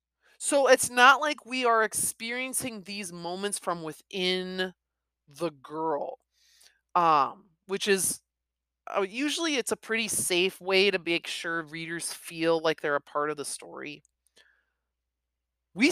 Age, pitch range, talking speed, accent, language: 30-49, 130-205 Hz, 130 wpm, American, English